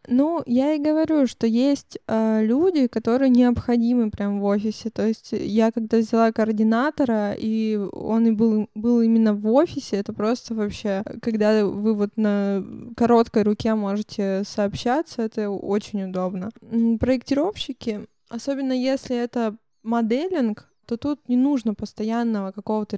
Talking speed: 135 wpm